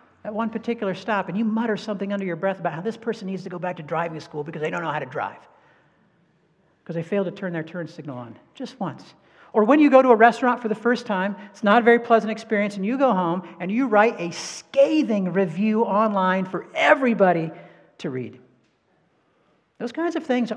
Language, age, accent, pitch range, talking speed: English, 50-69, American, 170-225 Hz, 220 wpm